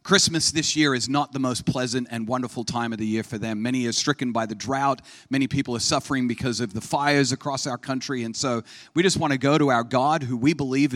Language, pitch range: English, 115-145 Hz